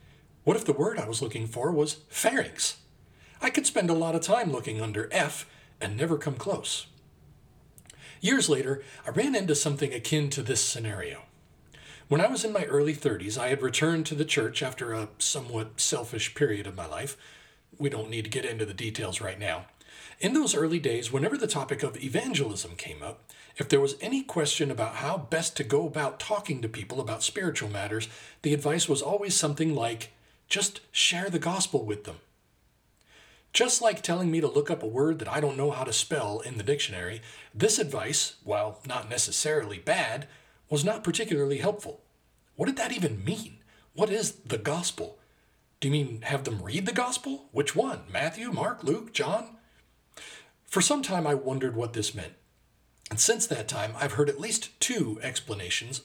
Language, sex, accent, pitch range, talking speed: English, male, American, 110-165 Hz, 185 wpm